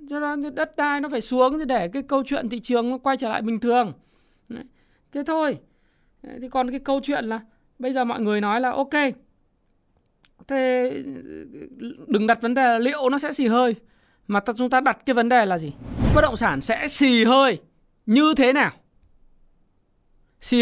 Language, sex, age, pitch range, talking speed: Vietnamese, male, 20-39, 215-275 Hz, 185 wpm